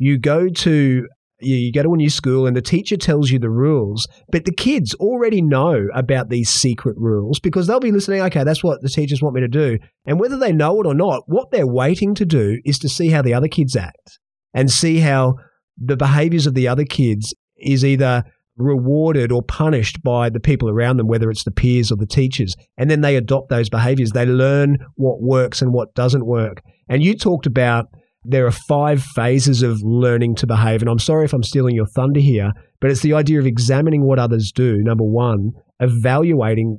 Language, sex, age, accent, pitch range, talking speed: English, male, 30-49, Australian, 120-145 Hz, 215 wpm